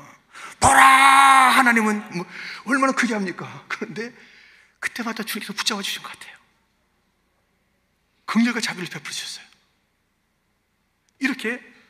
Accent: native